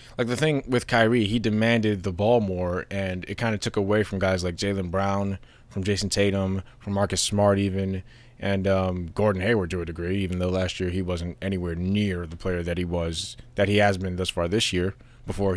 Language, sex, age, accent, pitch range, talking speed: English, male, 20-39, American, 95-120 Hz, 220 wpm